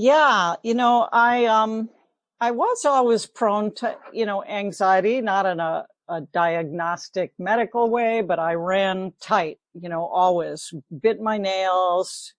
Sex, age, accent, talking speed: female, 60-79, American, 145 wpm